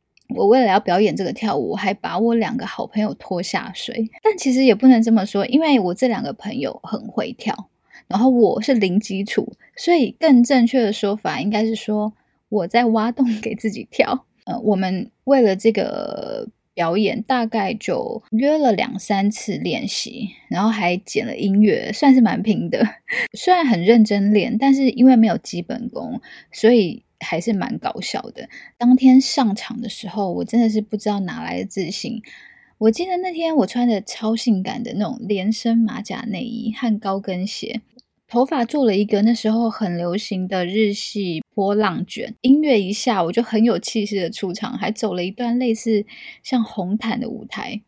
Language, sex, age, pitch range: Chinese, female, 10-29, 210-250 Hz